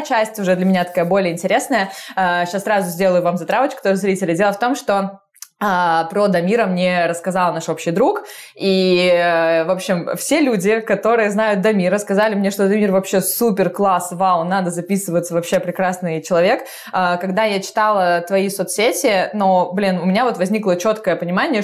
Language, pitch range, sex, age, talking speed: Russian, 175-205 Hz, female, 20-39, 165 wpm